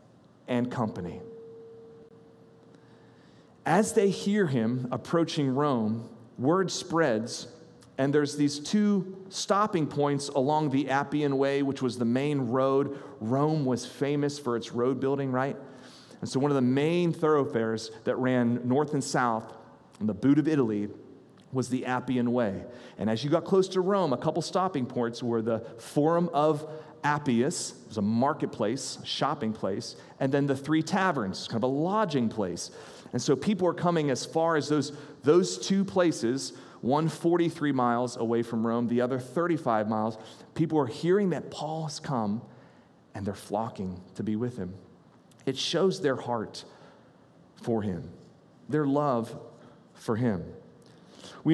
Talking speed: 155 wpm